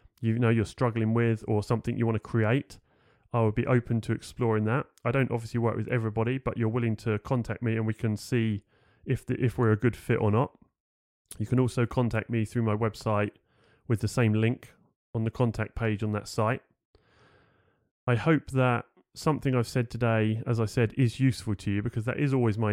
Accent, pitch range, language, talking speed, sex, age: British, 110-125 Hz, English, 215 wpm, male, 30-49